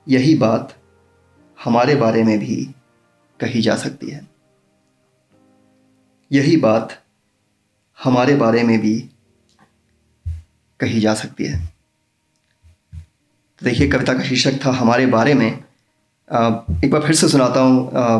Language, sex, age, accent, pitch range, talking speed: Hindi, male, 30-49, native, 110-140 Hz, 115 wpm